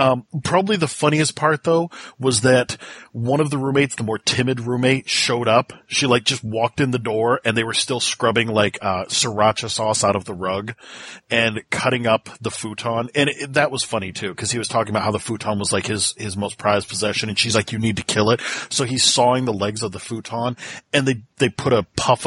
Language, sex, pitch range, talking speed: English, male, 115-155 Hz, 235 wpm